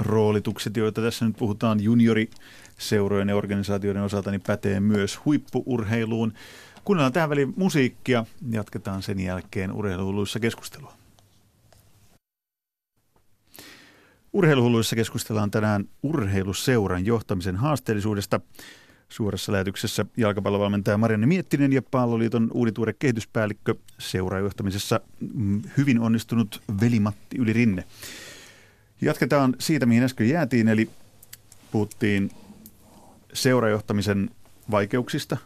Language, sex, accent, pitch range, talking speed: Finnish, male, native, 100-120 Hz, 85 wpm